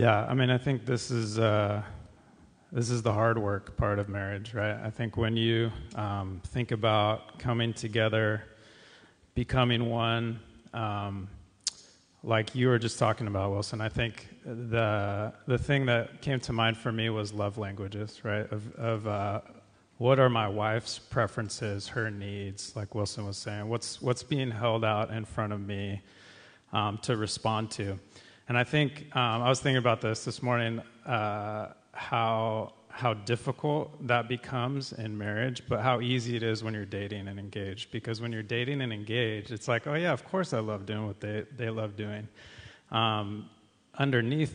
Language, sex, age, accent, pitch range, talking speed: English, male, 30-49, American, 105-120 Hz, 175 wpm